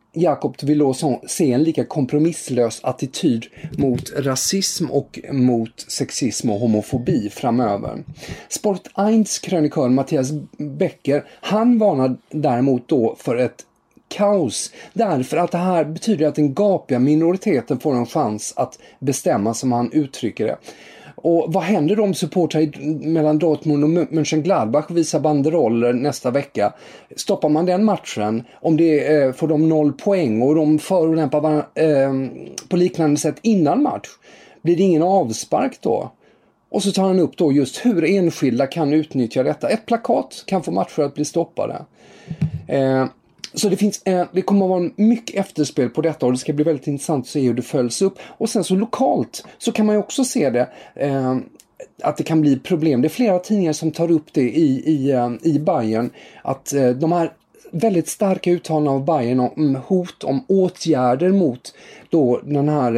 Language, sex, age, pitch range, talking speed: English, male, 30-49, 135-180 Hz, 165 wpm